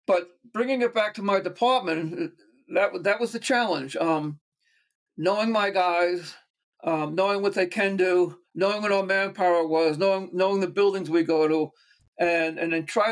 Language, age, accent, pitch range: English, 60-79, American, 175-220 Hz